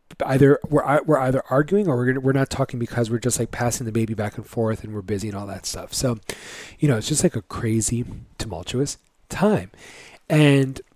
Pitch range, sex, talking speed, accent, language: 115-150 Hz, male, 220 wpm, American, English